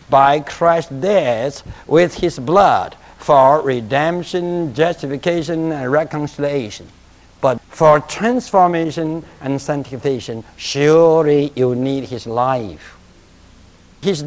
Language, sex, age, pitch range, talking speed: English, male, 60-79, 115-180 Hz, 95 wpm